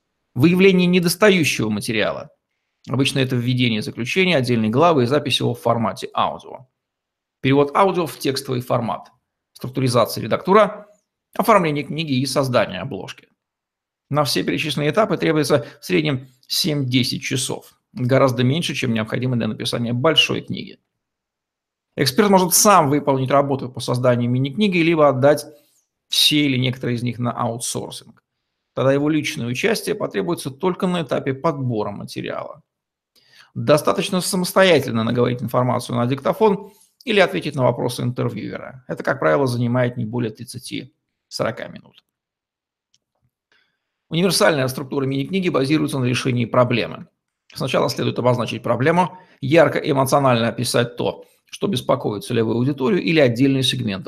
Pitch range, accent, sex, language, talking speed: 120-160 Hz, native, male, Russian, 125 wpm